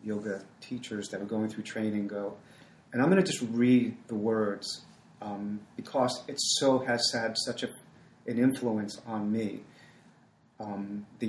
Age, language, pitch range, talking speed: 30-49, English, 105-130 Hz, 160 wpm